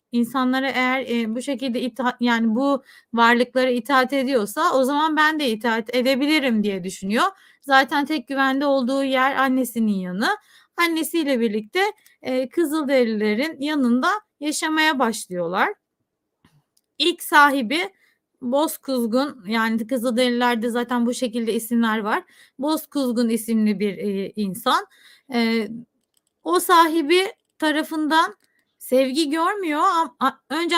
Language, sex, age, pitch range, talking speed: Turkish, female, 30-49, 235-300 Hz, 110 wpm